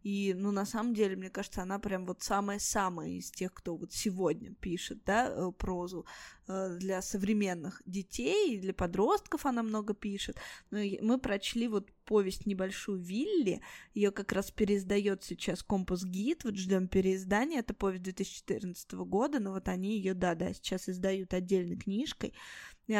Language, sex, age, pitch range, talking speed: Russian, female, 20-39, 195-225 Hz, 150 wpm